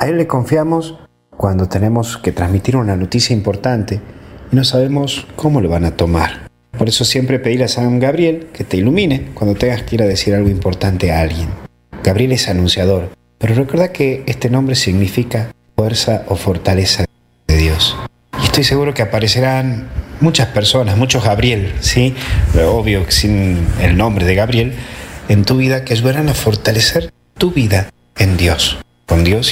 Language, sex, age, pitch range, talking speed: Spanish, male, 40-59, 90-125 Hz, 170 wpm